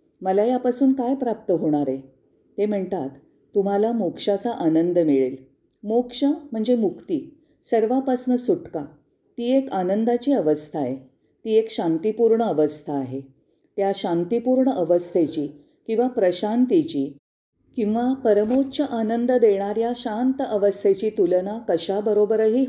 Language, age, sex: Marathi, 40-59, female